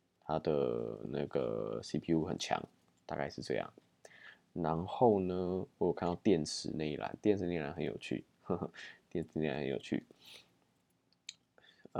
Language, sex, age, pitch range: Chinese, male, 20-39, 75-85 Hz